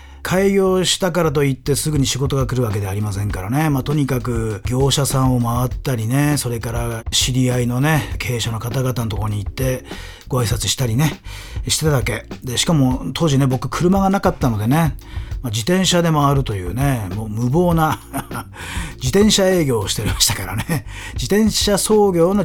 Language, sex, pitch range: Japanese, male, 115-155 Hz